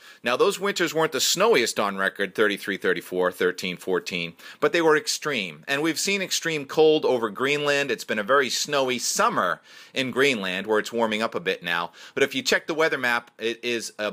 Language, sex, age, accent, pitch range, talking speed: English, male, 40-59, American, 110-160 Hz, 205 wpm